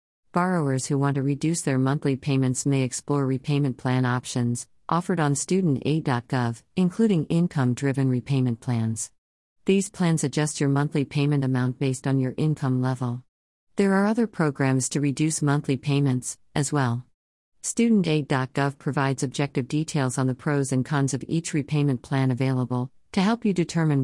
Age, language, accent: 50-69, English, American